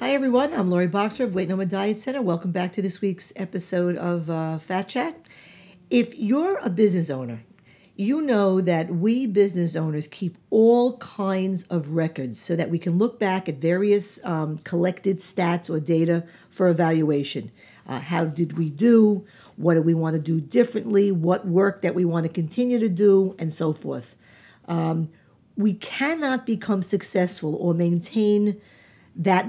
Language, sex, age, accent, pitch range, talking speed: English, female, 50-69, American, 170-205 Hz, 170 wpm